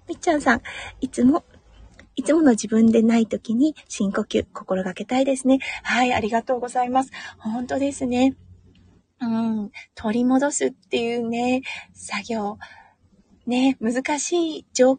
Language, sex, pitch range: Japanese, female, 195-260 Hz